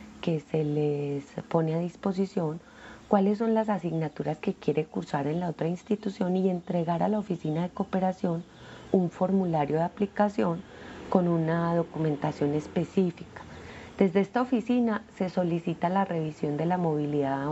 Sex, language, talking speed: female, Spanish, 145 wpm